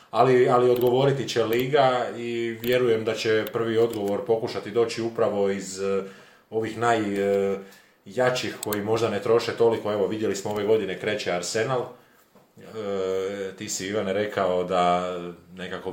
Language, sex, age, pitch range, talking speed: Croatian, male, 30-49, 95-115 Hz, 130 wpm